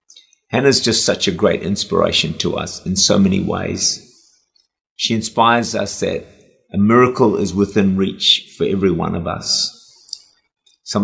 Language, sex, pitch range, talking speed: English, male, 100-120 Hz, 150 wpm